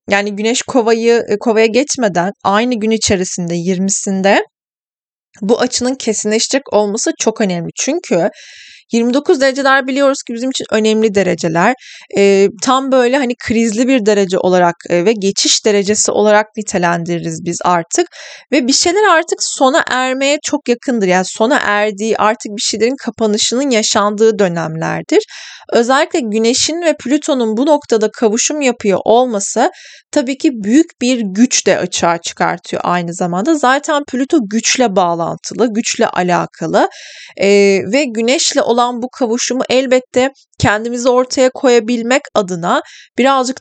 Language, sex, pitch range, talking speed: Turkish, female, 205-265 Hz, 130 wpm